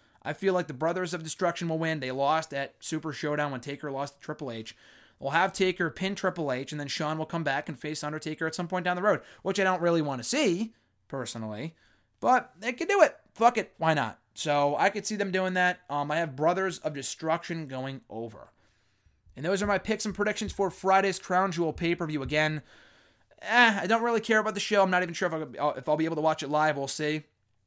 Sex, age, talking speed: male, 20-39, 240 wpm